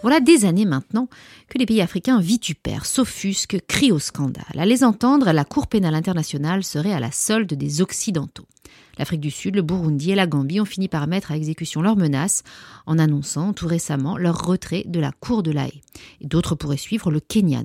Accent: French